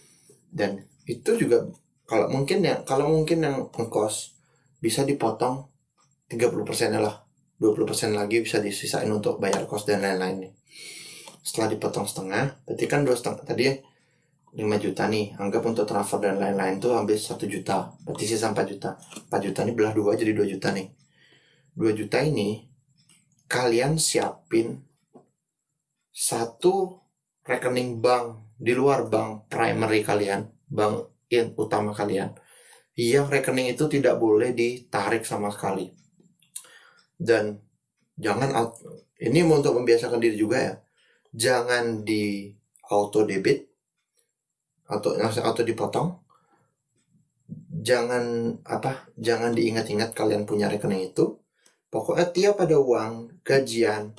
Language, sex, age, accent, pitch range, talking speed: Indonesian, male, 20-39, native, 105-140 Hz, 125 wpm